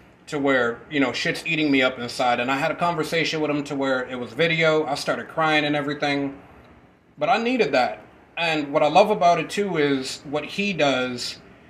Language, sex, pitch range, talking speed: English, male, 145-185 Hz, 210 wpm